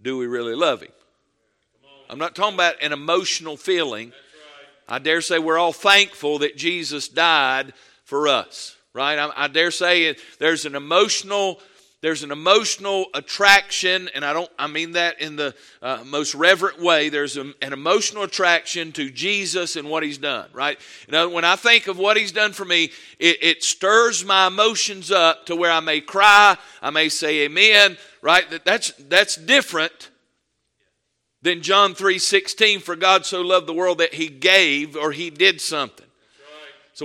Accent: American